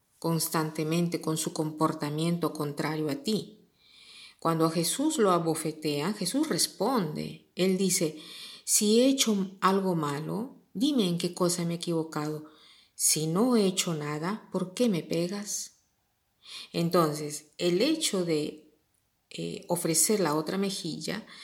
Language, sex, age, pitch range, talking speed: Spanish, female, 40-59, 155-185 Hz, 130 wpm